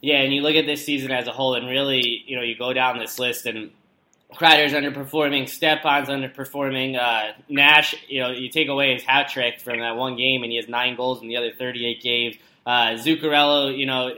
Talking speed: 220 wpm